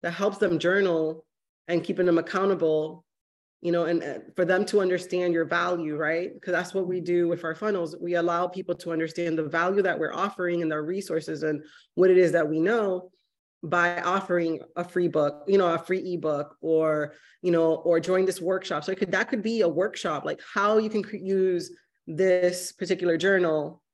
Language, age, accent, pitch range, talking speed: English, 20-39, American, 165-200 Hz, 200 wpm